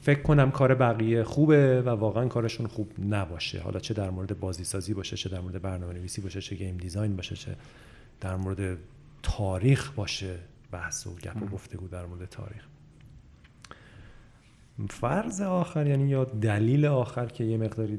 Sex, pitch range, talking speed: male, 105-125 Hz, 145 wpm